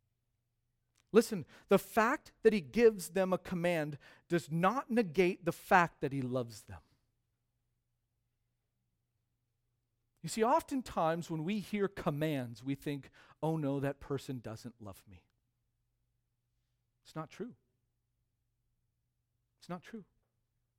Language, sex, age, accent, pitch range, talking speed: English, male, 40-59, American, 120-175 Hz, 115 wpm